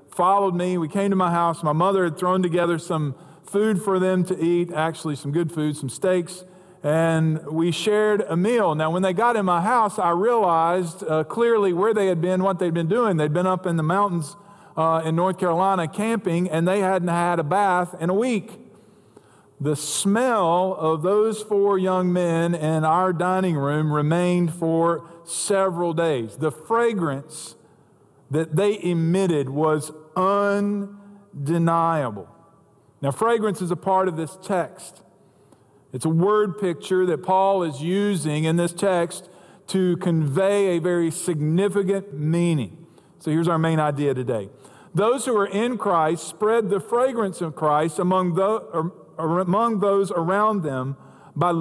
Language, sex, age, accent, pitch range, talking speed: English, male, 40-59, American, 160-195 Hz, 160 wpm